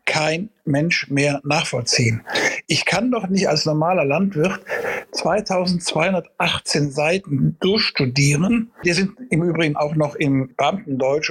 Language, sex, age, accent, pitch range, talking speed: German, male, 60-79, German, 145-180 Hz, 115 wpm